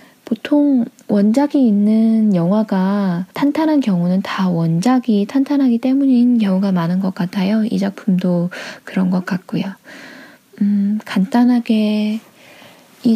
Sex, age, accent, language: female, 20-39, native, Korean